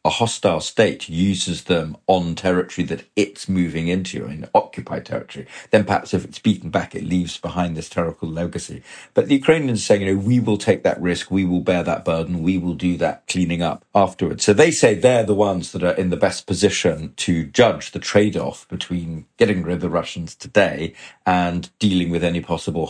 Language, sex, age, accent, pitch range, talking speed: English, male, 40-59, British, 85-105 Hz, 200 wpm